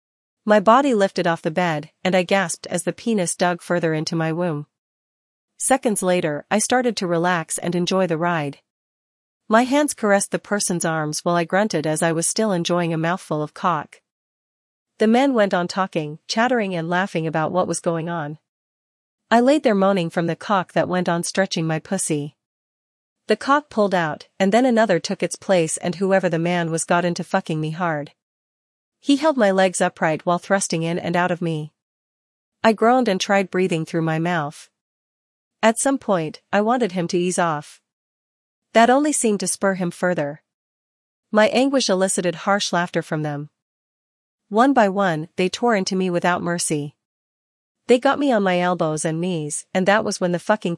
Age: 40-59